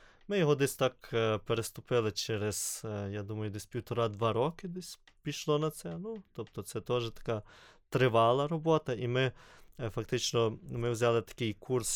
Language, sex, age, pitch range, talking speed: Ukrainian, male, 20-39, 105-130 Hz, 145 wpm